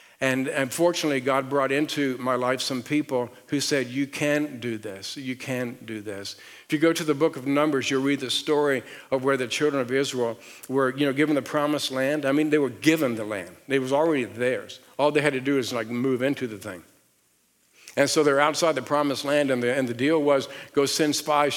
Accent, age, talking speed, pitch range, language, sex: American, 50-69, 230 wpm, 130-150 Hz, English, male